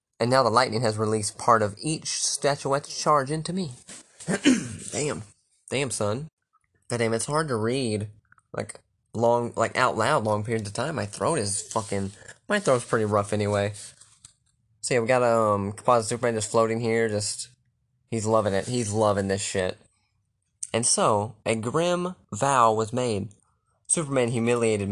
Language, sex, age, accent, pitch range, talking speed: English, male, 20-39, American, 105-125 Hz, 160 wpm